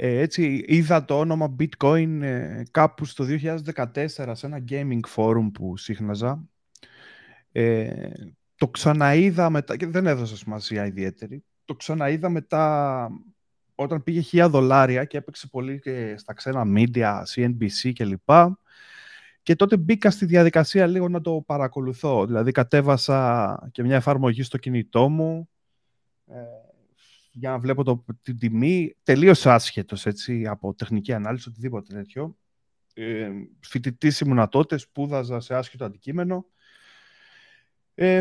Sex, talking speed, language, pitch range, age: male, 125 wpm, Greek, 125-170 Hz, 30-49